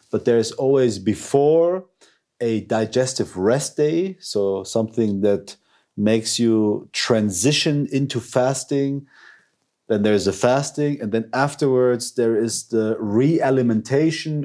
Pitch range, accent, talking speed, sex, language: 110-135 Hz, German, 125 wpm, male, English